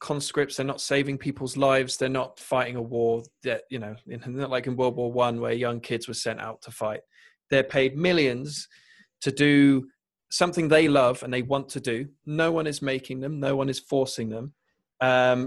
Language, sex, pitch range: English, male, 120-140 Hz